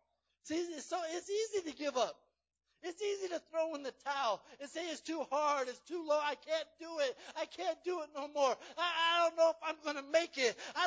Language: English